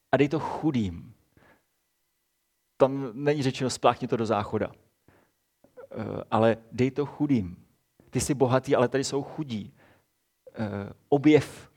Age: 30-49